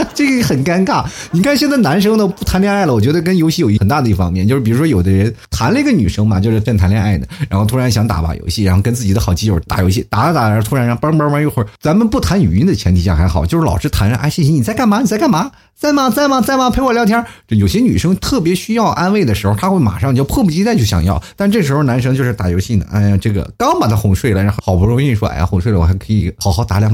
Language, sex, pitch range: Chinese, male, 100-155 Hz